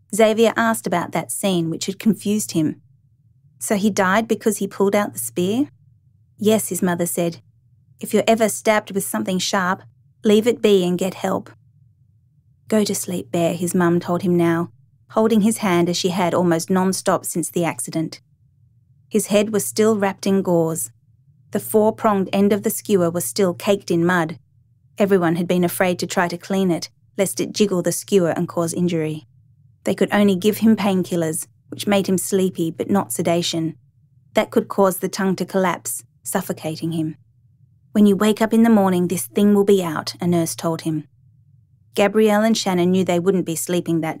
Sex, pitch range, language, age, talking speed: female, 140-200 Hz, English, 30-49, 185 wpm